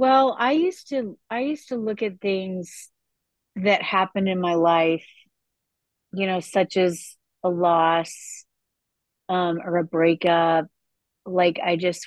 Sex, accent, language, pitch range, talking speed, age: female, American, English, 165-205 Hz, 140 wpm, 30-49